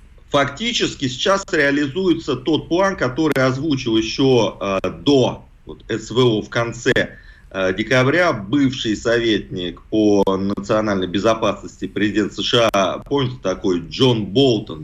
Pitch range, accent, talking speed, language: 105-140 Hz, native, 100 wpm, Russian